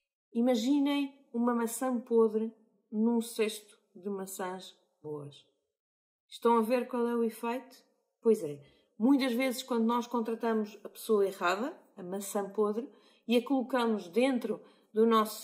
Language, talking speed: Portuguese, 135 wpm